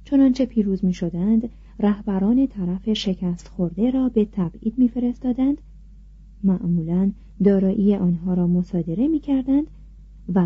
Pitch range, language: 180-235 Hz, Persian